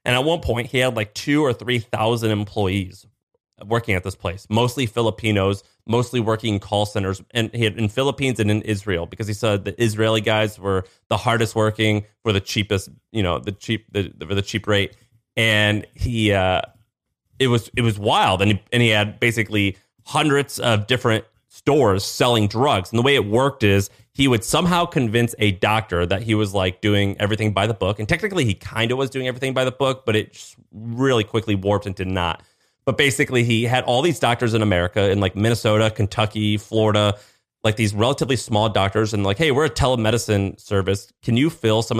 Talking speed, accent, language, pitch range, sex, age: 205 wpm, American, English, 100-120 Hz, male, 30-49